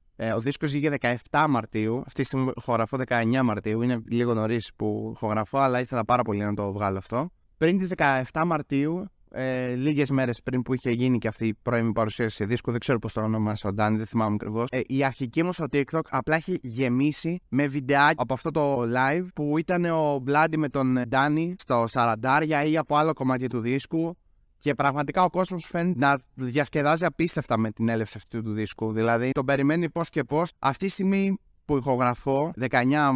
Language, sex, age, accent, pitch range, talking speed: Greek, male, 20-39, native, 115-155 Hz, 195 wpm